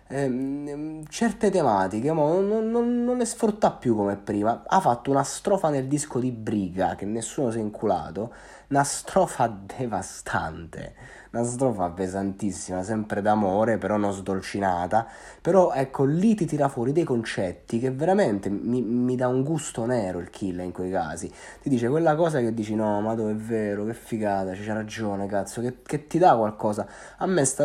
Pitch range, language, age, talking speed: 110-150 Hz, Italian, 30-49, 175 wpm